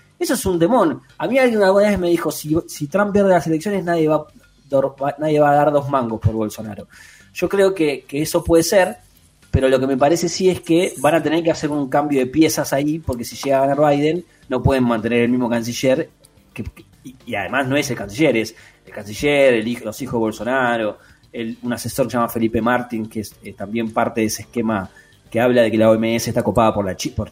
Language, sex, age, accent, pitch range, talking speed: Spanish, male, 20-39, Argentinian, 115-155 Hz, 230 wpm